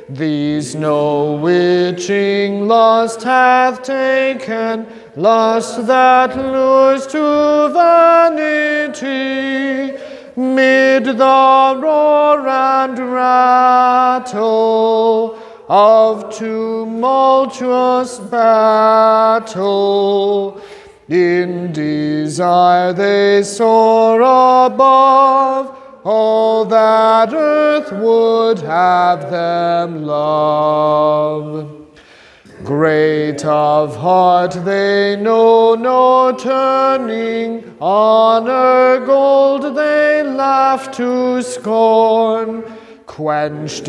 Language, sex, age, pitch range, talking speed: English, male, 40-59, 200-265 Hz, 60 wpm